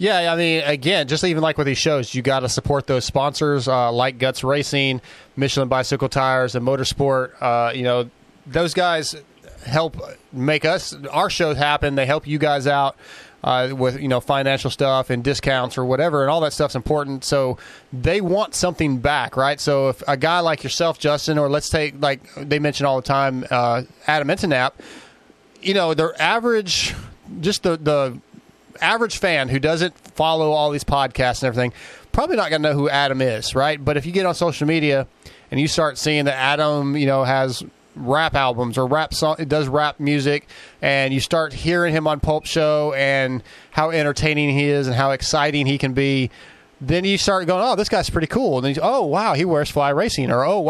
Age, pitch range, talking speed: 30-49, 135-155 Hz, 200 wpm